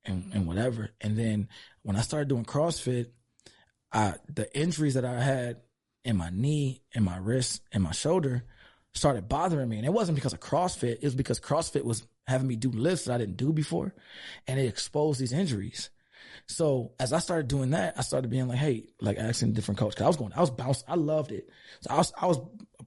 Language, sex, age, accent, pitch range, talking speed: English, male, 20-39, American, 105-140 Hz, 220 wpm